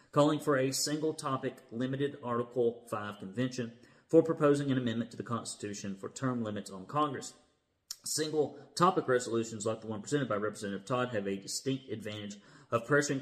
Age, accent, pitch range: 40-59, American, 105-130 Hz